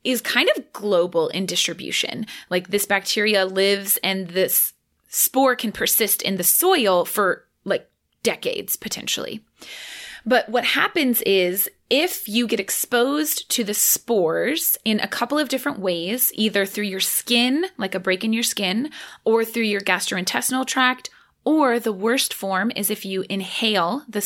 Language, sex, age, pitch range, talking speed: English, female, 20-39, 190-245 Hz, 155 wpm